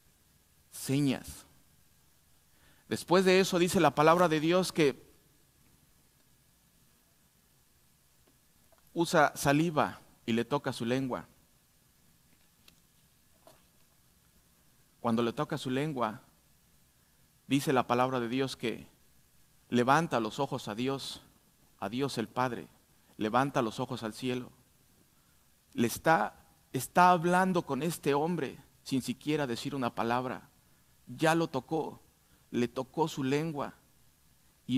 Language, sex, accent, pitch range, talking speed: Spanish, male, Mexican, 125-165 Hz, 105 wpm